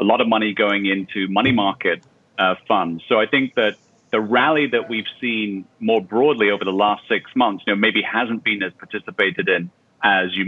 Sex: male